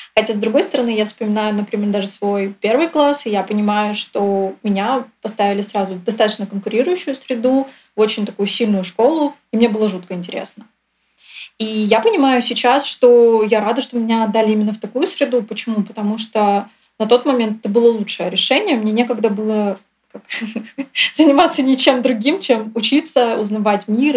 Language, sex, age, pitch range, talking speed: Russian, female, 20-39, 210-250 Hz, 165 wpm